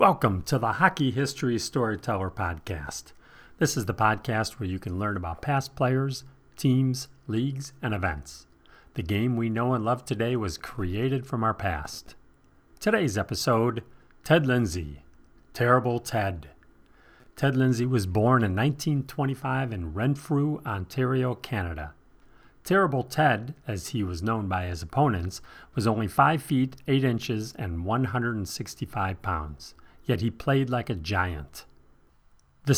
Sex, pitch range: male, 90-135 Hz